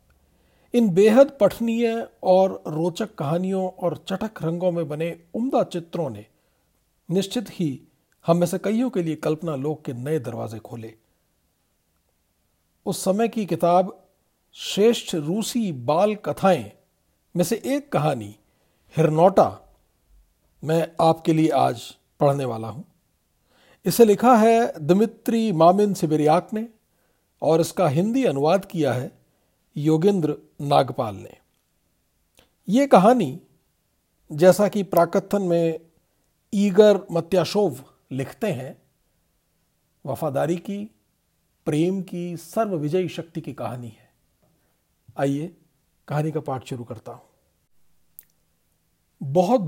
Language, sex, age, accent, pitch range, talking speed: Hindi, male, 50-69, native, 140-200 Hz, 110 wpm